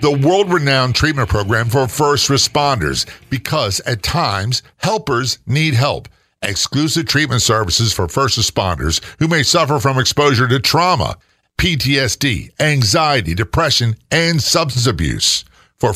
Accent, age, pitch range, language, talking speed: American, 50-69, 105-140 Hz, English, 125 wpm